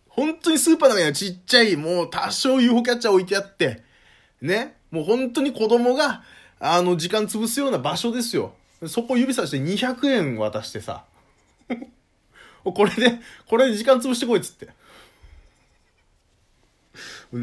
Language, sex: Japanese, male